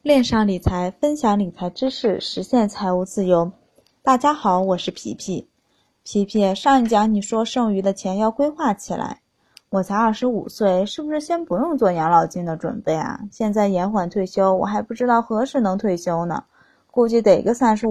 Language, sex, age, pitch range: Chinese, female, 20-39, 190-255 Hz